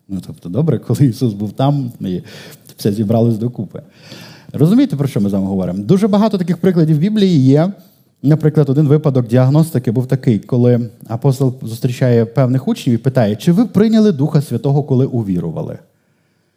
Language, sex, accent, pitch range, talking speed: Ukrainian, male, native, 115-165 Hz, 165 wpm